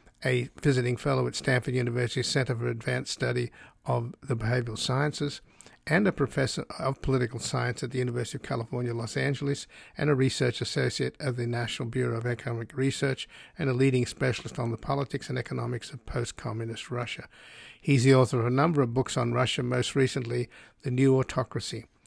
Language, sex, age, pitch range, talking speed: English, male, 50-69, 120-135 Hz, 175 wpm